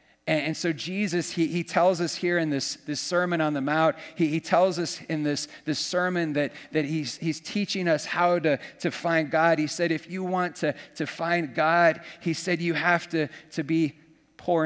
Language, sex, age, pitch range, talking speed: English, male, 40-59, 150-175 Hz, 210 wpm